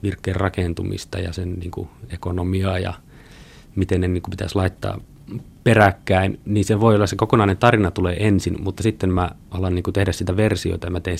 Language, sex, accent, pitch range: Finnish, male, native, 90-105 Hz